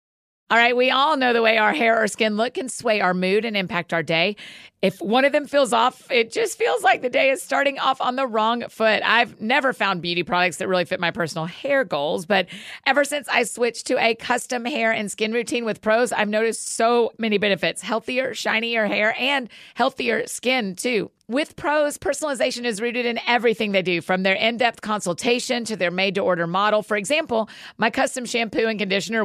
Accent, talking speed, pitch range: American, 205 wpm, 195-250 Hz